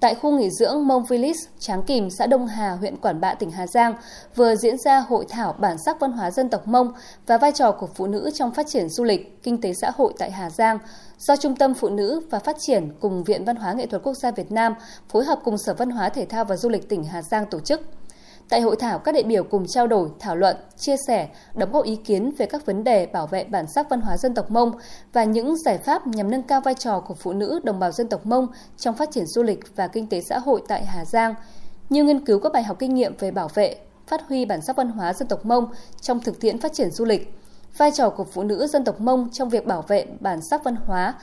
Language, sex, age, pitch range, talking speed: Vietnamese, female, 20-39, 200-260 Hz, 270 wpm